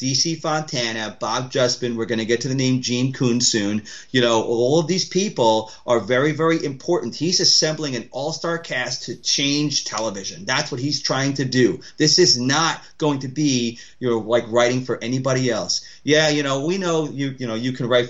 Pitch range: 115-140 Hz